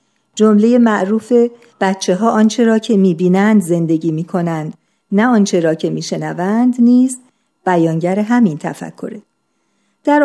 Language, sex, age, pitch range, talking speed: Persian, female, 50-69, 180-230 Hz, 115 wpm